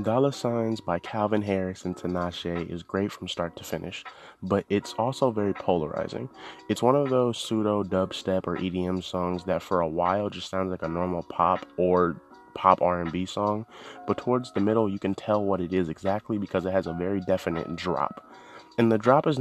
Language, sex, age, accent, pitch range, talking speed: English, male, 20-39, American, 90-110 Hz, 195 wpm